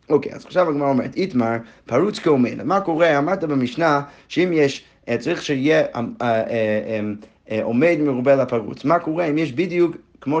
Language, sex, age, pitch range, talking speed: Hebrew, male, 30-49, 125-170 Hz, 150 wpm